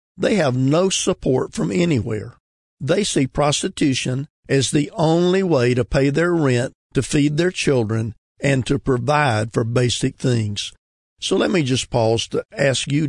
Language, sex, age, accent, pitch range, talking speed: English, male, 50-69, American, 120-145 Hz, 160 wpm